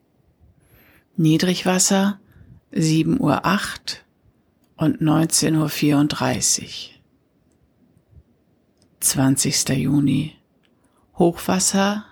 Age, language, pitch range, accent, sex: 60-79, German, 145-180 Hz, German, female